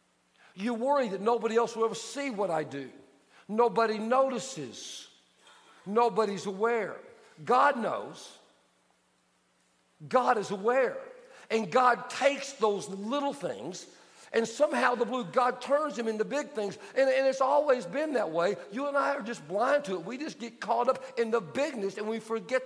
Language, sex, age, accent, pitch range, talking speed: English, male, 50-69, American, 180-245 Hz, 165 wpm